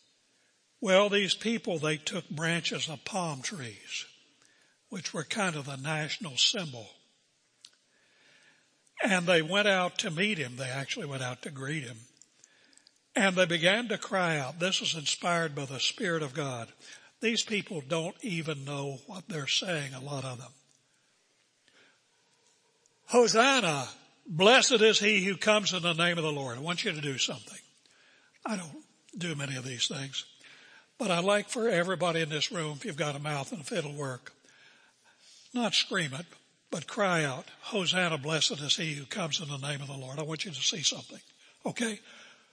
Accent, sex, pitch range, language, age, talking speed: American, male, 150-210 Hz, English, 60-79, 175 wpm